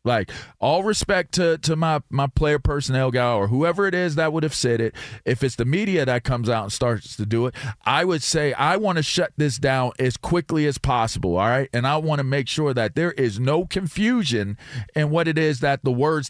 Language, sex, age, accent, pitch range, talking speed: English, male, 40-59, American, 120-150 Hz, 235 wpm